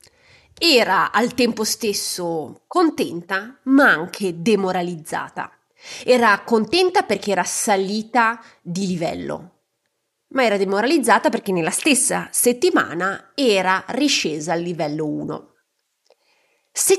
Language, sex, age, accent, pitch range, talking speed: Italian, female, 30-49, native, 175-245 Hz, 100 wpm